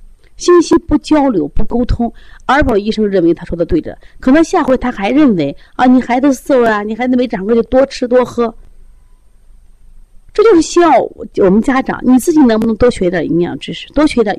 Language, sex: Chinese, female